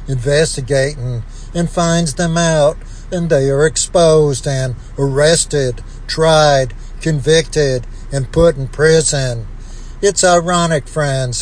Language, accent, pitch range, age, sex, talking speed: English, American, 125-155 Hz, 60-79, male, 105 wpm